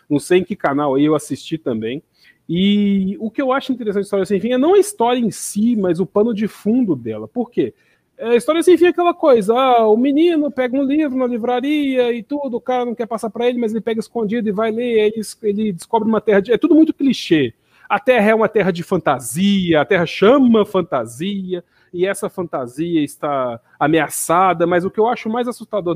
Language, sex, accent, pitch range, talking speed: Portuguese, male, Brazilian, 155-225 Hz, 220 wpm